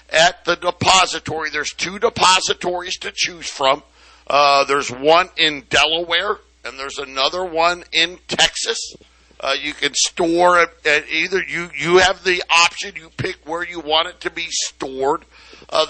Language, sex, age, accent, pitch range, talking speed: English, male, 60-79, American, 155-185 Hz, 160 wpm